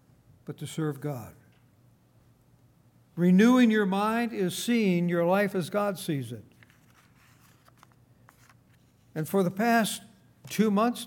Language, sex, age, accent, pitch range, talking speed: English, male, 60-79, American, 155-205 Hz, 115 wpm